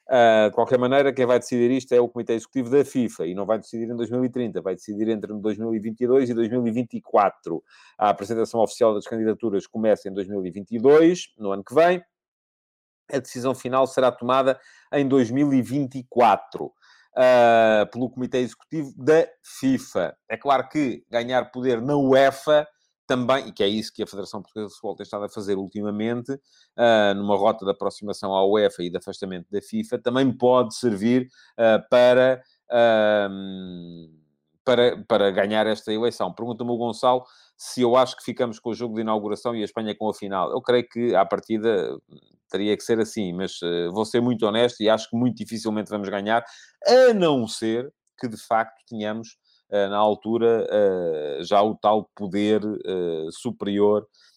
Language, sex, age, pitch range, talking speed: Portuguese, male, 30-49, 105-125 Hz, 165 wpm